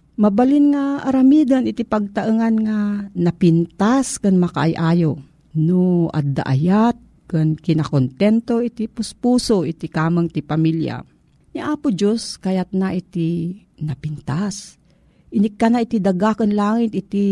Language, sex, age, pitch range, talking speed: Filipino, female, 50-69, 165-225 Hz, 105 wpm